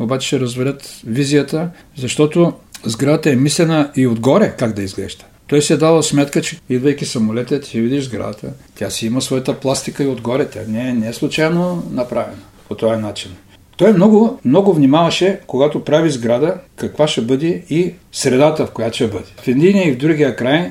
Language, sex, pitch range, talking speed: Bulgarian, male, 115-150 Hz, 185 wpm